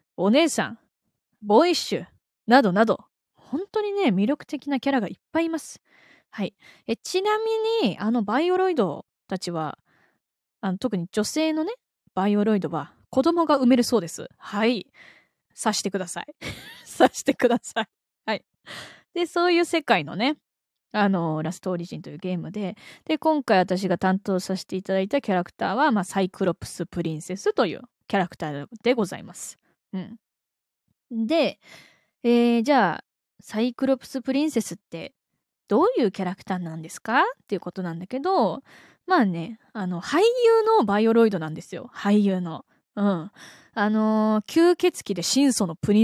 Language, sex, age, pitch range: Japanese, female, 20-39, 190-275 Hz